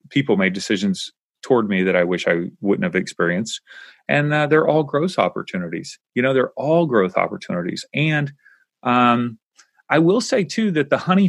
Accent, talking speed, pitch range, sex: American, 175 wpm, 95-135 Hz, male